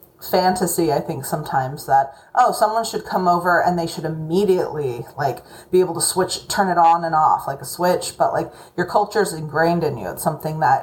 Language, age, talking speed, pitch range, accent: English, 30-49, 210 wpm, 160-185 Hz, American